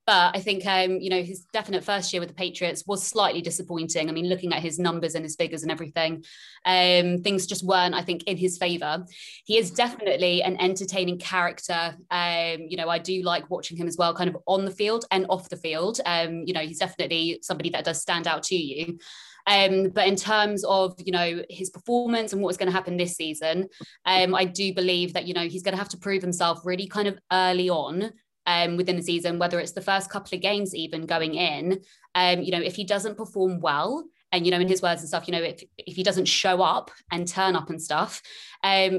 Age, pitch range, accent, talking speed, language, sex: 20-39, 170-190 Hz, British, 230 wpm, English, female